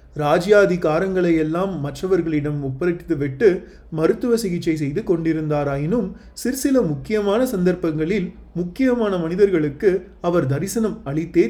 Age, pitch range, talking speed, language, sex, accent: 30-49, 155-195 Hz, 90 wpm, Tamil, male, native